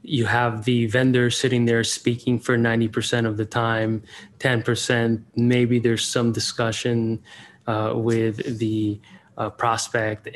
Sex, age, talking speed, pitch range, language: male, 20-39, 130 wpm, 110-125 Hz, English